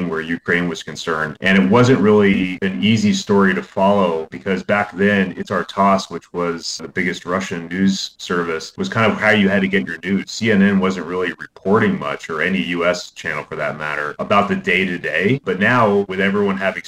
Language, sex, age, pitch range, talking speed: English, male, 30-49, 85-100 Hz, 195 wpm